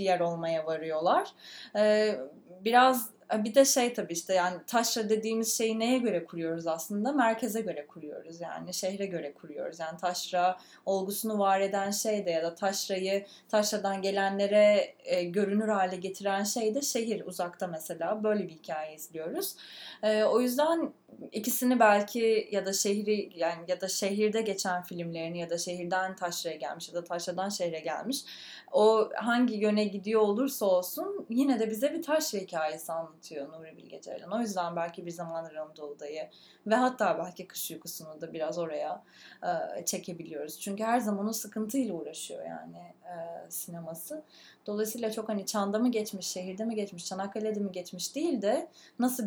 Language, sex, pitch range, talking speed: English, female, 170-220 Hz, 150 wpm